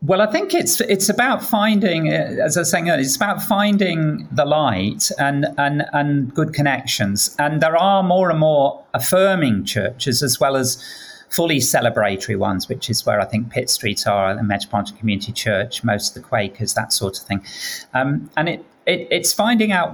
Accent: British